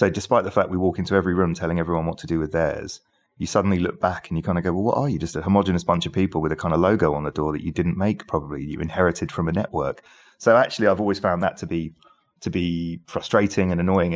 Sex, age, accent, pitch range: male, 30-49, British, 80-95 Hz